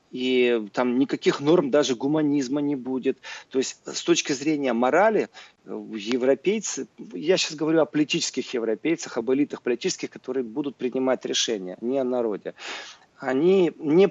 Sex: male